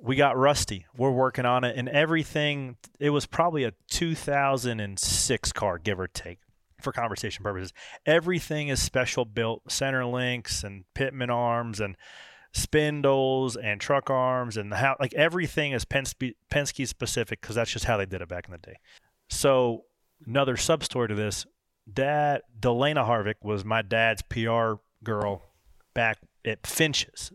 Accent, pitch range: American, 105-135 Hz